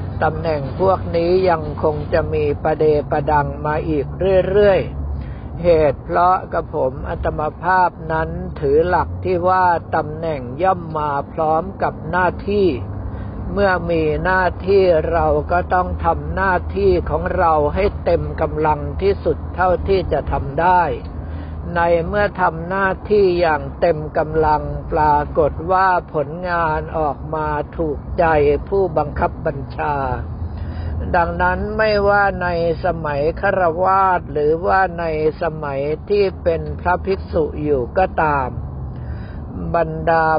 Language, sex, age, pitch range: Thai, male, 60-79, 145-180 Hz